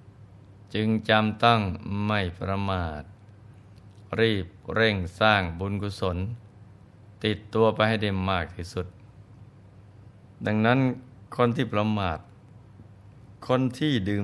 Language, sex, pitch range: Thai, male, 100-115 Hz